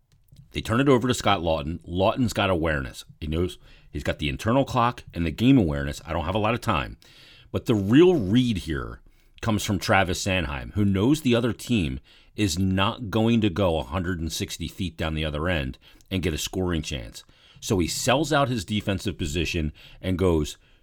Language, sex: English, male